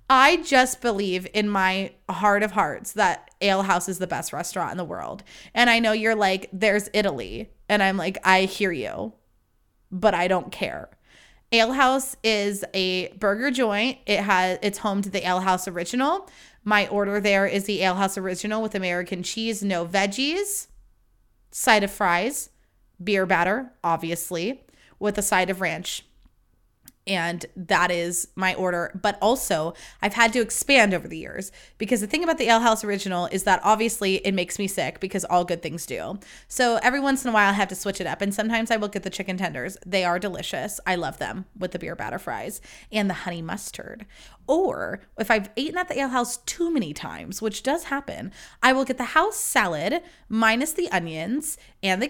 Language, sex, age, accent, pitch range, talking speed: English, female, 20-39, American, 185-230 Hz, 195 wpm